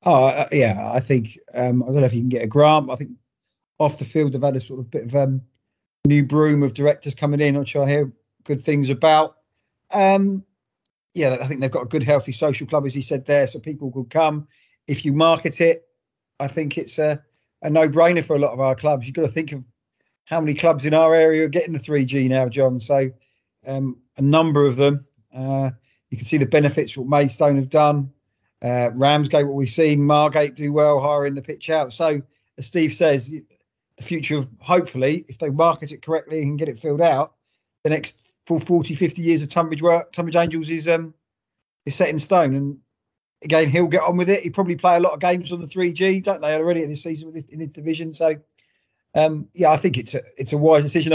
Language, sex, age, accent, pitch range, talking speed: English, male, 40-59, British, 135-160 Hz, 225 wpm